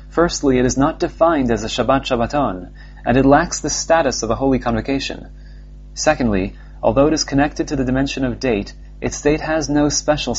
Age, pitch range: 30-49, 115-145 Hz